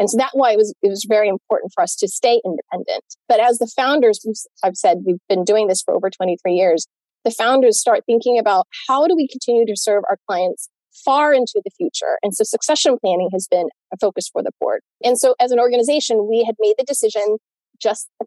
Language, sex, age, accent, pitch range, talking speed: English, female, 30-49, American, 200-275 Hz, 230 wpm